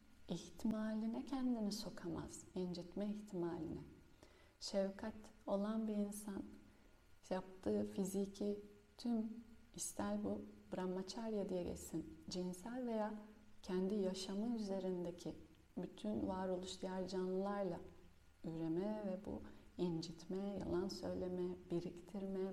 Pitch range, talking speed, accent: 170-210 Hz, 90 wpm, native